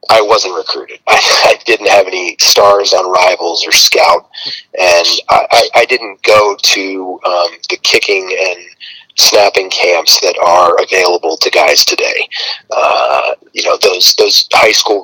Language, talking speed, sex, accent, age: English, 155 wpm, male, American, 30-49